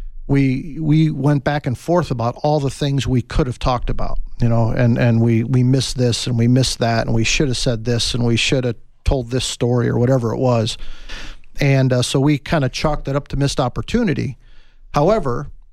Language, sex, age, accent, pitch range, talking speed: English, male, 50-69, American, 120-145 Hz, 215 wpm